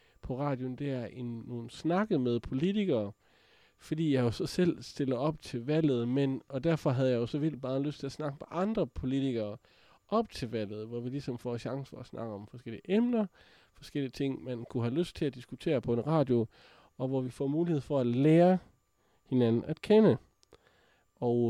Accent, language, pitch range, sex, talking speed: native, Danish, 120-150 Hz, male, 200 wpm